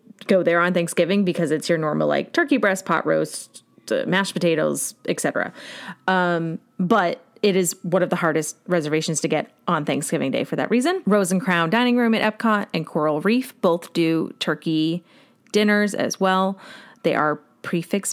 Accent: American